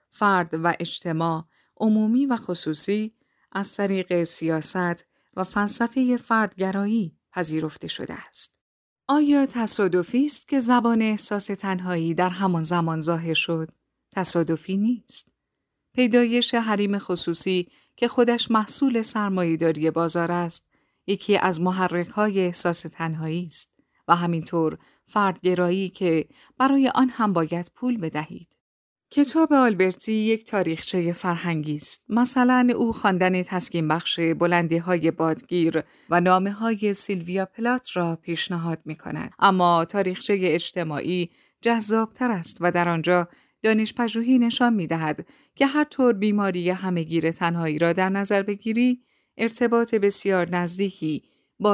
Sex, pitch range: female, 170-225 Hz